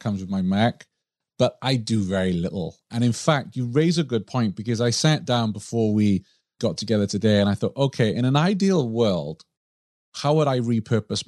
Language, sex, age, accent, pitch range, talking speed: English, male, 40-59, British, 100-135 Hz, 200 wpm